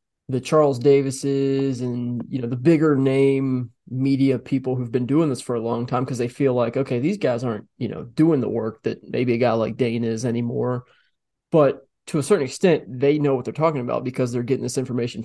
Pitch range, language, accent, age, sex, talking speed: 120-135 Hz, English, American, 20-39, male, 220 wpm